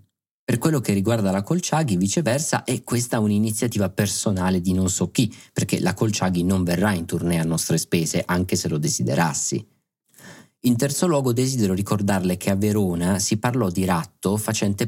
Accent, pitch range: native, 95-115 Hz